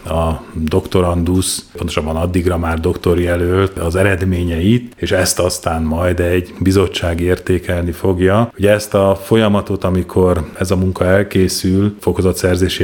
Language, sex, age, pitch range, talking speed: Hungarian, male, 30-49, 90-100 Hz, 125 wpm